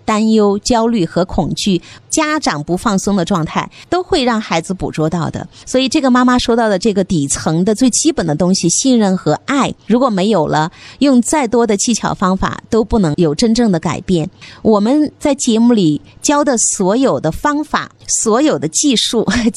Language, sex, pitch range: Chinese, female, 175-245 Hz